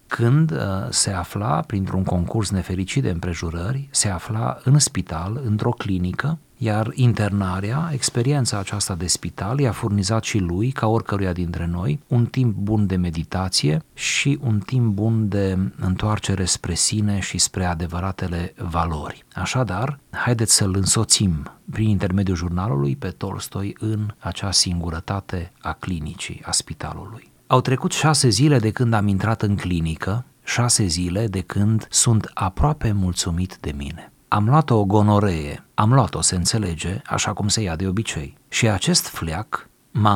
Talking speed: 145 wpm